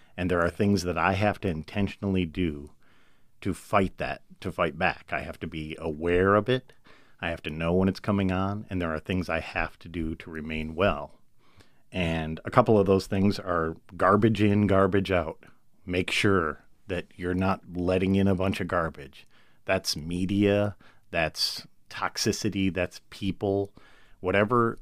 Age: 40-59